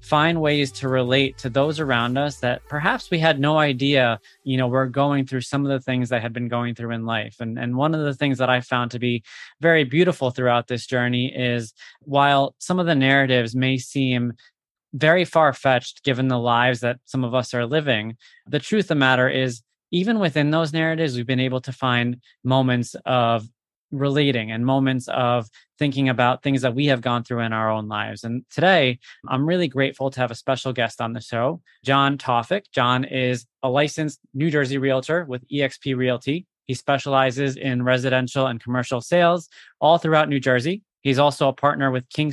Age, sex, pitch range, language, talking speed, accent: 20-39, male, 125-145 Hz, English, 200 wpm, American